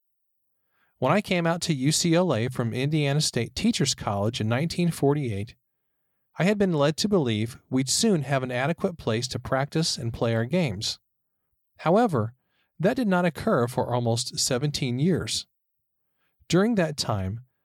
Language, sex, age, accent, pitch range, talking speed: English, male, 40-59, American, 120-165 Hz, 145 wpm